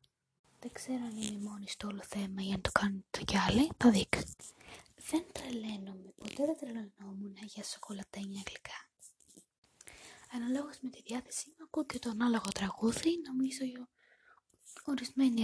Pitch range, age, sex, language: 215-270 Hz, 20-39, female, Greek